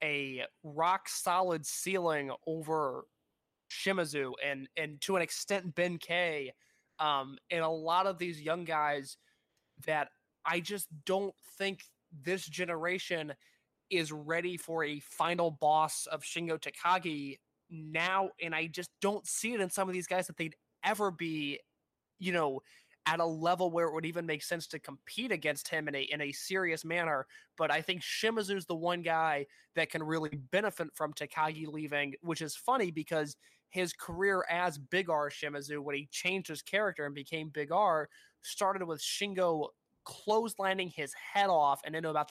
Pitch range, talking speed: 150-185 Hz, 165 wpm